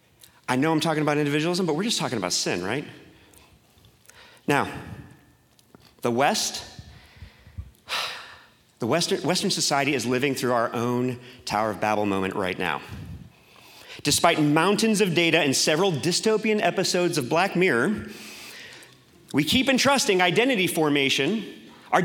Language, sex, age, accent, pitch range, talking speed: English, male, 40-59, American, 125-180 Hz, 130 wpm